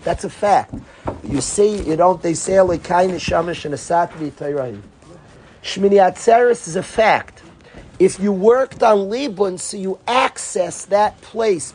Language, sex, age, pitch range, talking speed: English, male, 50-69, 170-215 Hz, 130 wpm